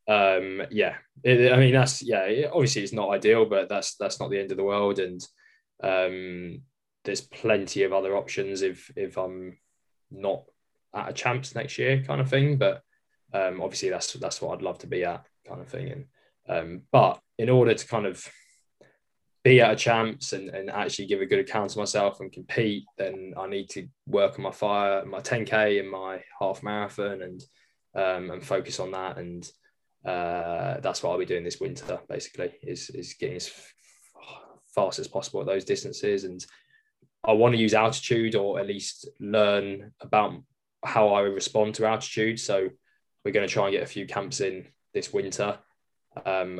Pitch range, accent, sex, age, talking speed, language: 95-135 Hz, British, male, 10-29, 185 wpm, English